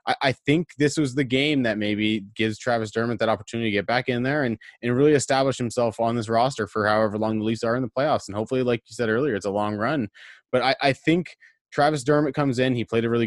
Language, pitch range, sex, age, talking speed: English, 105-125 Hz, male, 20-39, 260 wpm